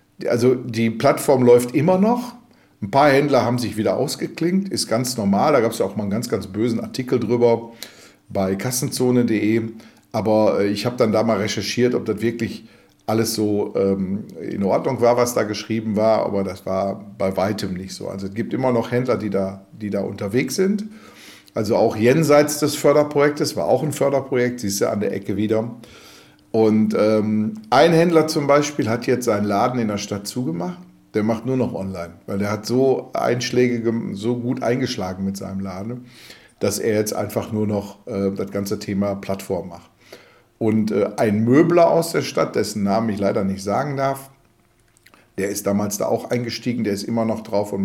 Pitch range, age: 100-125 Hz, 50-69